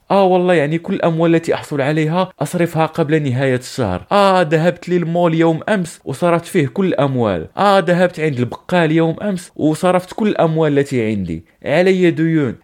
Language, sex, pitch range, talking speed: Arabic, male, 115-155 Hz, 160 wpm